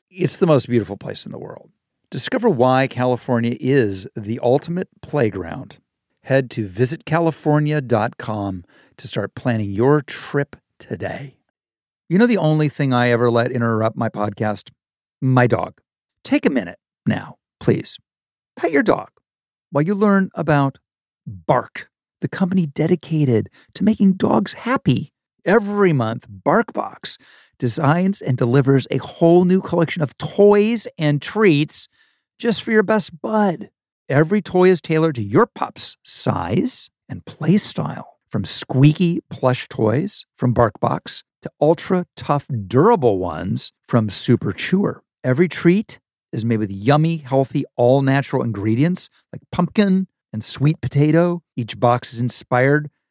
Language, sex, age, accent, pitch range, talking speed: English, male, 50-69, American, 120-175 Hz, 135 wpm